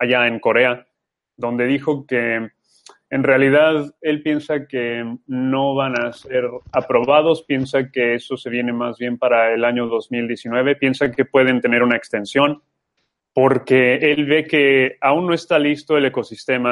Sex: male